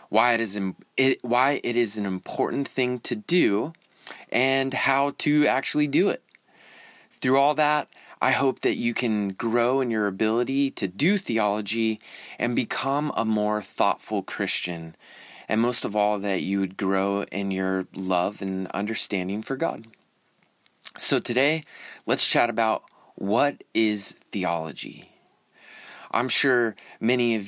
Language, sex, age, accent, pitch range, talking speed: English, male, 30-49, American, 100-130 Hz, 145 wpm